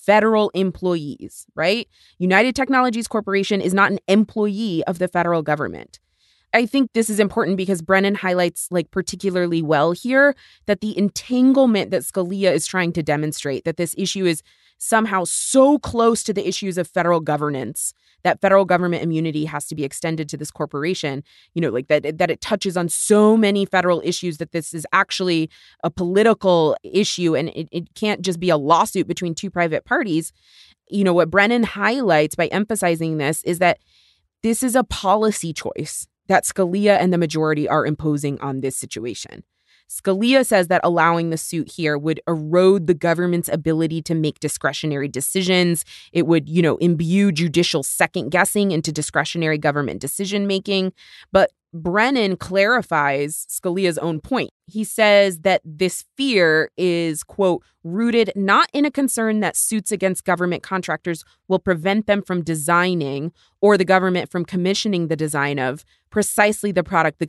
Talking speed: 165 wpm